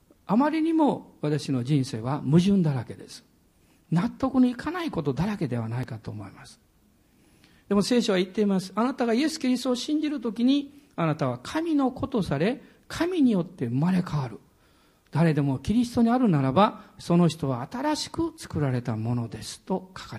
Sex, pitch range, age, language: male, 165-270 Hz, 50-69, Japanese